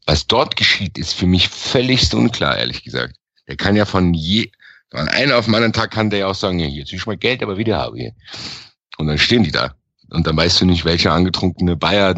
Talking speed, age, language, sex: 245 wpm, 50-69, German, male